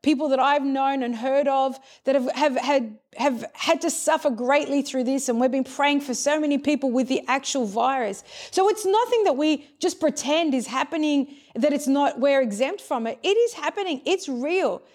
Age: 30-49